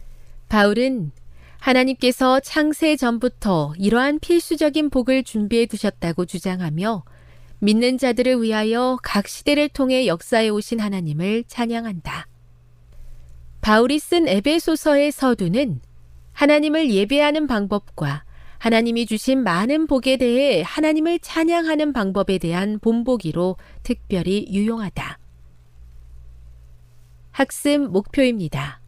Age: 30-49